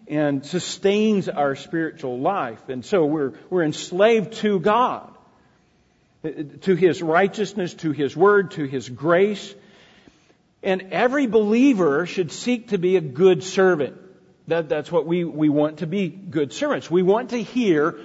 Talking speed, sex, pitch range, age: 150 wpm, male, 150-210 Hz, 50-69